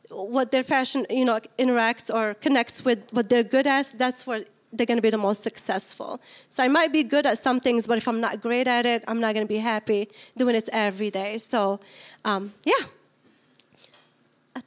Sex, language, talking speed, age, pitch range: female, English, 210 wpm, 30-49, 225-270 Hz